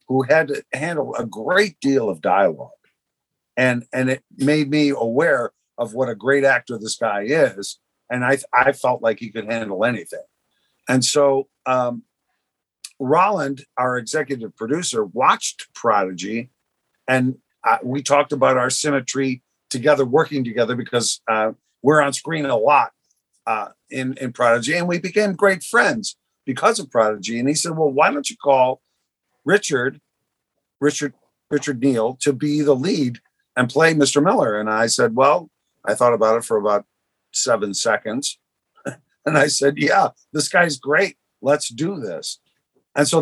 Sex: male